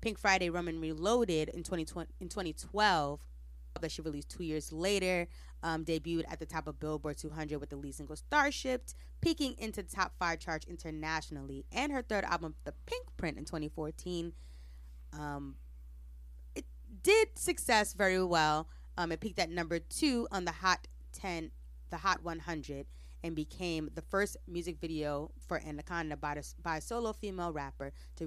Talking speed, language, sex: 165 wpm, English, female